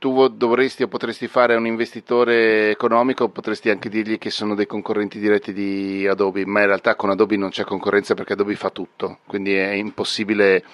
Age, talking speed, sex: 40-59, 185 wpm, male